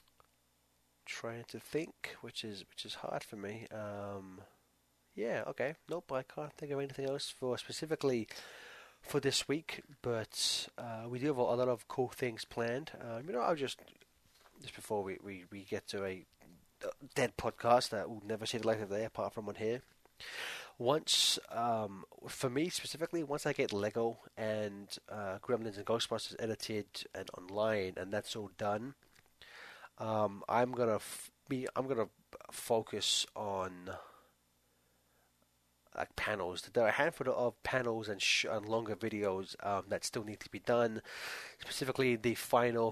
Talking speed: 165 wpm